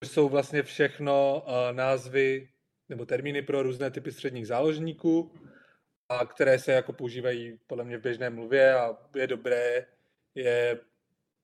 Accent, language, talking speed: native, Czech, 115 wpm